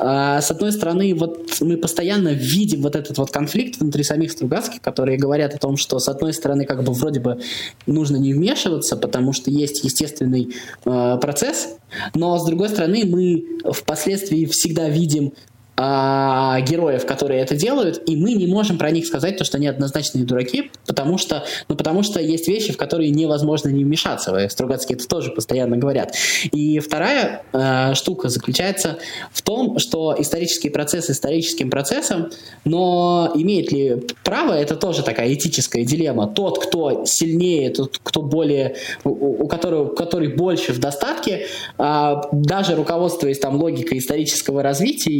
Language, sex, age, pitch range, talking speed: Russian, male, 20-39, 140-175 Hz, 155 wpm